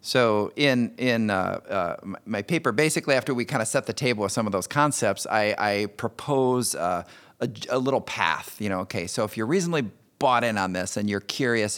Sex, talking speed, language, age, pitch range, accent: male, 215 wpm, English, 40-59, 100-125 Hz, American